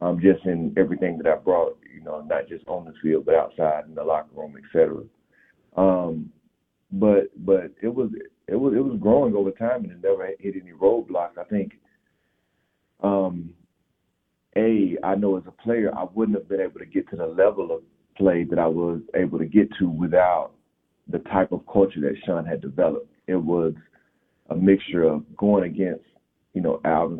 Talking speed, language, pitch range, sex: 195 wpm, English, 85-115 Hz, male